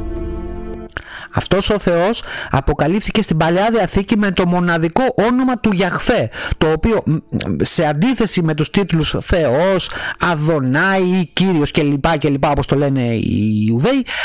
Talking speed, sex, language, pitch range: 130 wpm, male, Greek, 130-185 Hz